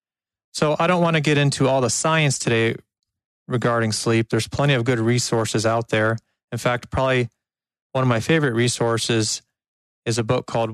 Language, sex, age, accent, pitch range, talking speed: English, male, 30-49, American, 110-130 Hz, 180 wpm